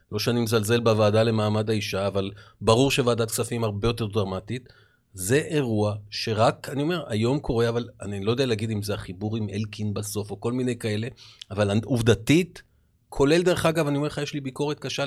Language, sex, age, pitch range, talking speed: Hebrew, male, 30-49, 110-155 Hz, 185 wpm